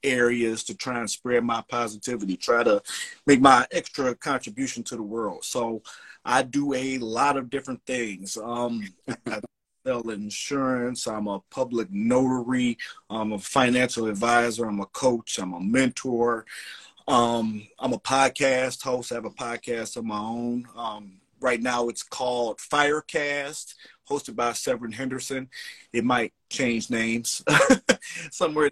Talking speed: 140 wpm